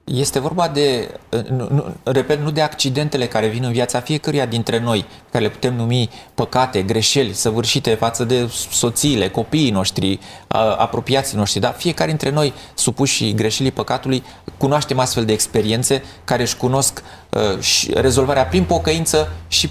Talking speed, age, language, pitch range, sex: 145 wpm, 30-49, Romanian, 110-145 Hz, male